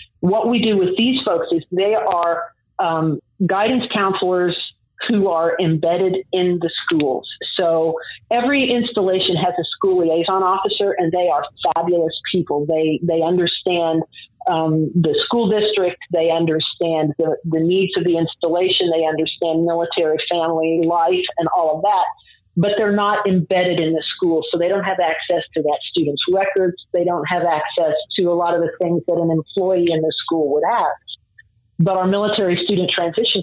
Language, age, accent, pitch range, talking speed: English, 40-59, American, 165-195 Hz, 170 wpm